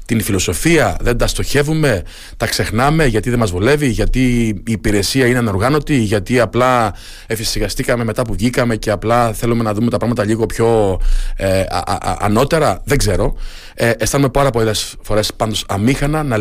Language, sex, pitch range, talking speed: Greek, male, 105-130 Hz, 150 wpm